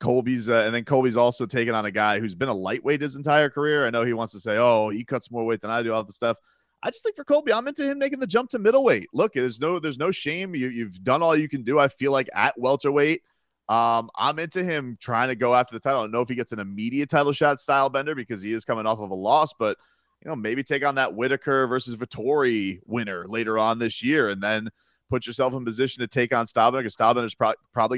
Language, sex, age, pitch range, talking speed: English, male, 30-49, 110-135 Hz, 270 wpm